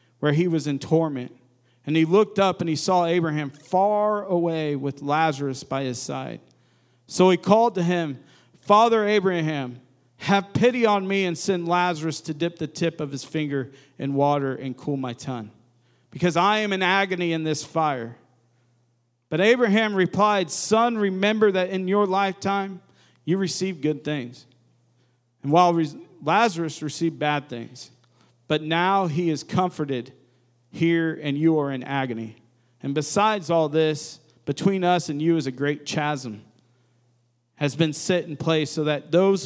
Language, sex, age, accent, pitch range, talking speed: English, male, 40-59, American, 130-195 Hz, 160 wpm